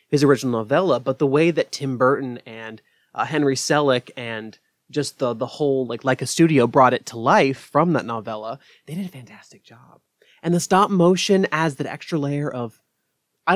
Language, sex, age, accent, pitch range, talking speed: English, male, 20-39, American, 125-160 Hz, 195 wpm